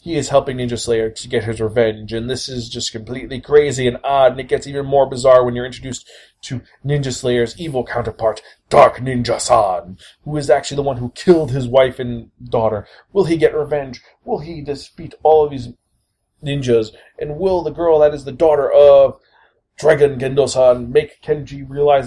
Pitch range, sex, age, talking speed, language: 120-145 Hz, male, 30-49, 190 wpm, English